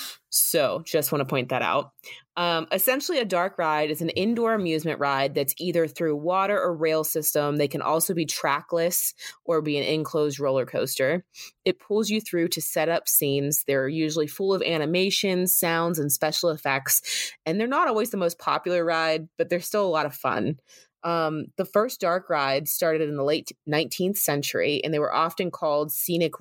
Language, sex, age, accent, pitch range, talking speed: English, female, 20-39, American, 150-180 Hz, 190 wpm